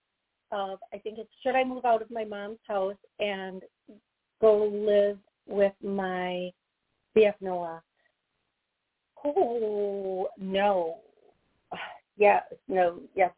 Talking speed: 100 wpm